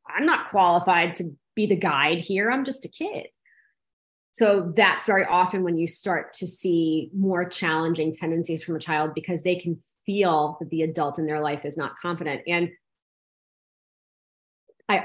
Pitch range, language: 165-210 Hz, English